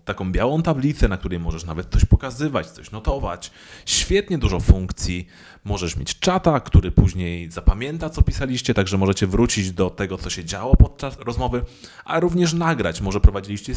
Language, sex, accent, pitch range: Polish, male, native, 90-145 Hz